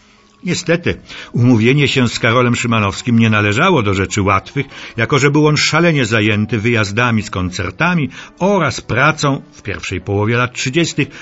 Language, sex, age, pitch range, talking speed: Polish, male, 60-79, 105-160 Hz, 145 wpm